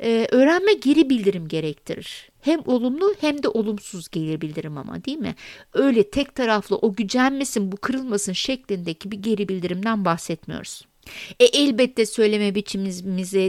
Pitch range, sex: 185-255 Hz, female